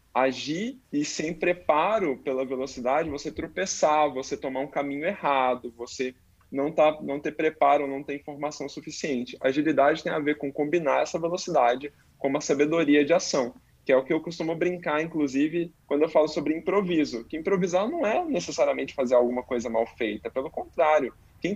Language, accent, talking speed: Portuguese, Brazilian, 175 wpm